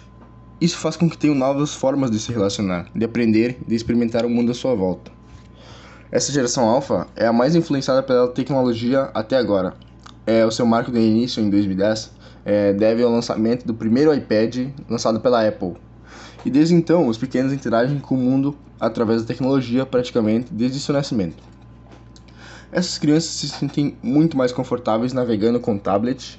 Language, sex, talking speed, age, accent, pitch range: Portuguese, male, 165 wpm, 10-29, Brazilian, 110-135 Hz